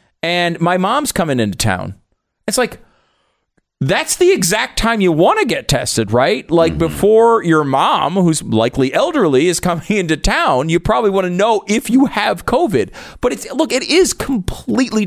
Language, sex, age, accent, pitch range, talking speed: English, male, 40-59, American, 160-225 Hz, 175 wpm